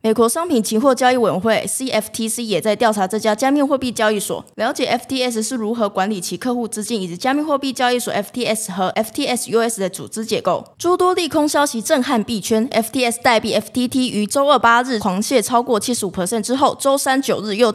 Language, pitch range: Chinese, 210-265 Hz